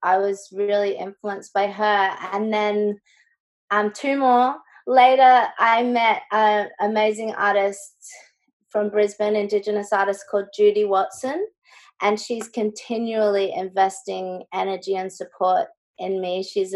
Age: 20-39